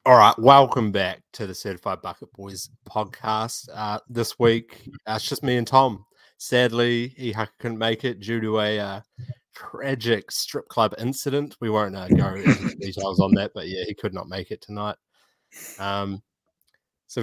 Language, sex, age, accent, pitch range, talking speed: English, male, 20-39, Australian, 105-125 Hz, 175 wpm